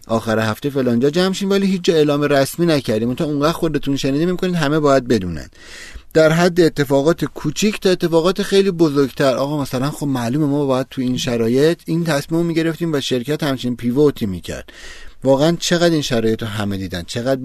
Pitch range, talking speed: 115-155 Hz, 190 wpm